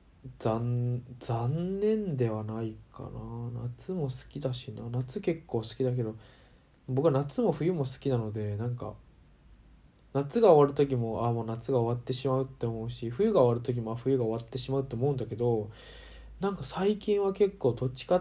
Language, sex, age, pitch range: Japanese, male, 20-39, 115-140 Hz